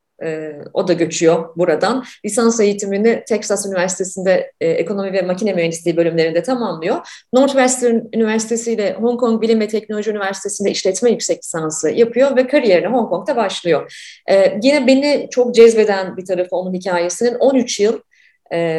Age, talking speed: 30-49, 145 wpm